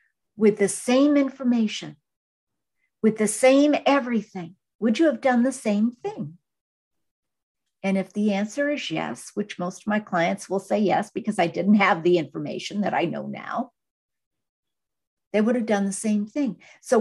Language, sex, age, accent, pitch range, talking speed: English, female, 60-79, American, 175-215 Hz, 165 wpm